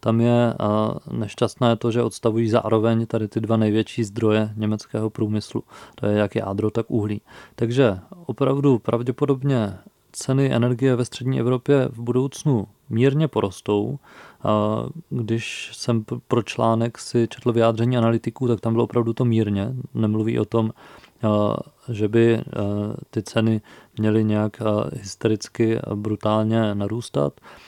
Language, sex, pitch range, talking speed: Czech, male, 110-130 Hz, 130 wpm